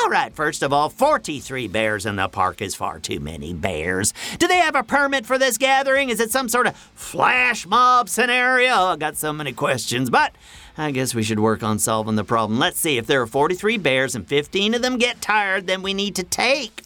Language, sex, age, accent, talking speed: English, male, 50-69, American, 230 wpm